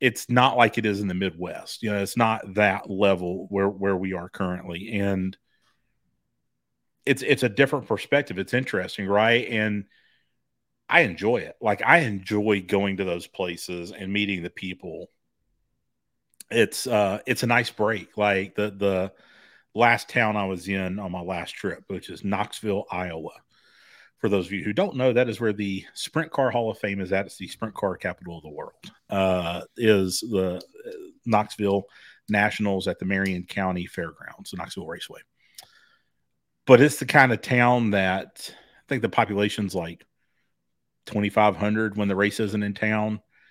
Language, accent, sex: English, American, male